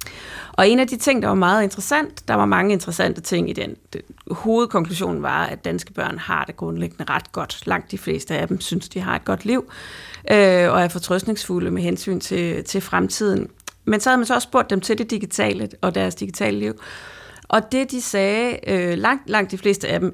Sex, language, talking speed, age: female, Danish, 210 wpm, 30-49